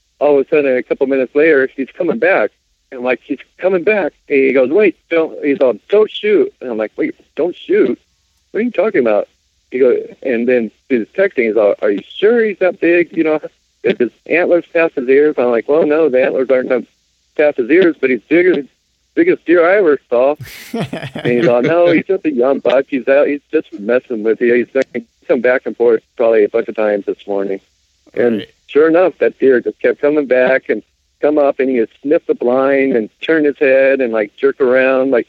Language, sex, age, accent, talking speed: English, male, 60-79, American, 225 wpm